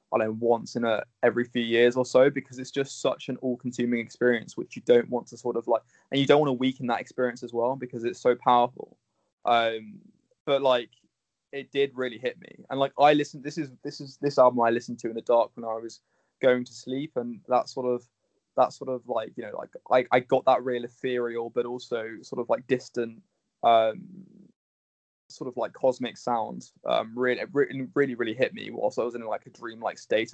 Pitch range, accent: 120-135 Hz, British